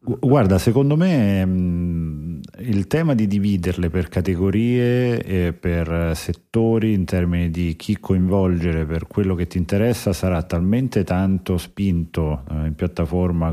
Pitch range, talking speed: 85-100 Hz, 125 wpm